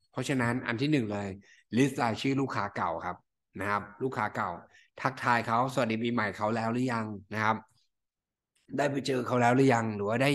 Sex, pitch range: male, 110-135 Hz